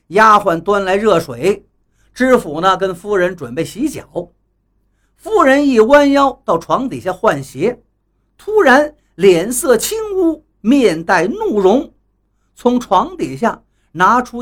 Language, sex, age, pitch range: Chinese, male, 50-69, 160-270 Hz